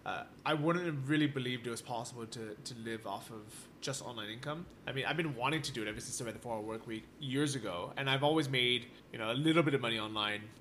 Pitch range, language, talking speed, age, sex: 115-150 Hz, English, 260 wpm, 20-39, male